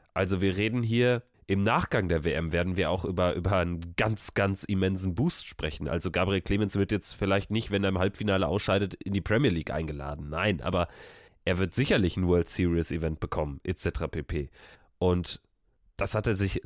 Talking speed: 190 wpm